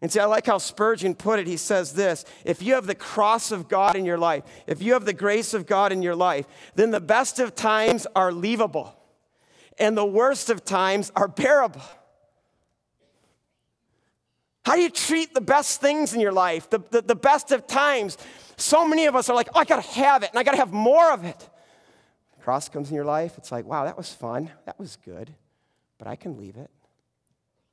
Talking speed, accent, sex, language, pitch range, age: 215 wpm, American, male, English, 165-255 Hz, 40-59